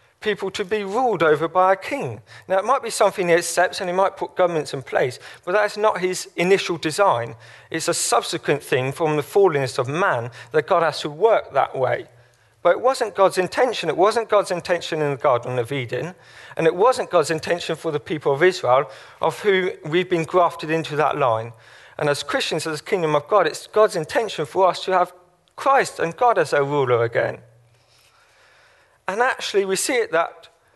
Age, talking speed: 40-59, 200 wpm